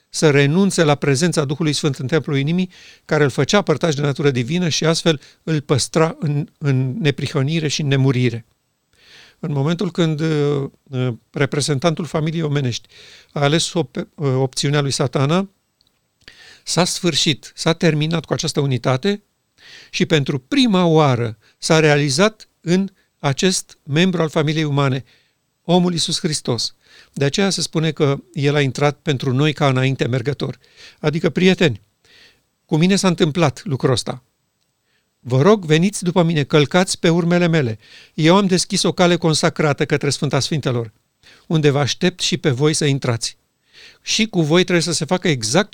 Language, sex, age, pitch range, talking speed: Romanian, male, 50-69, 140-175 Hz, 150 wpm